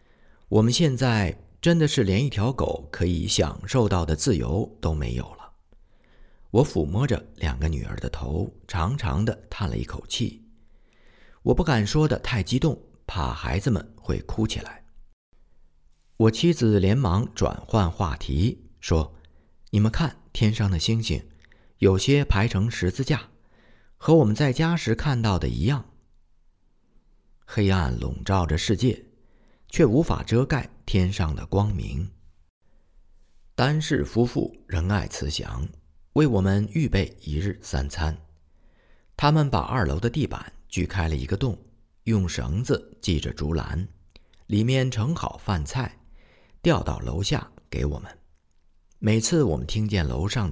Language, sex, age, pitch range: Chinese, male, 50-69, 75-110 Hz